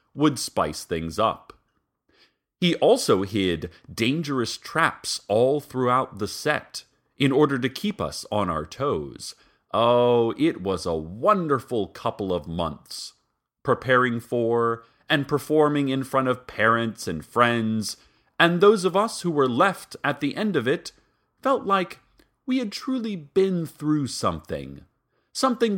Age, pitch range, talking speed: 40-59, 95-155 Hz, 140 wpm